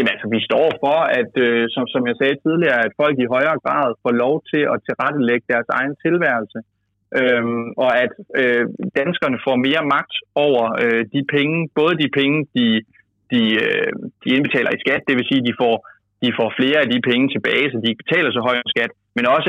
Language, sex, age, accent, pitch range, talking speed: Danish, male, 30-49, native, 115-135 Hz, 210 wpm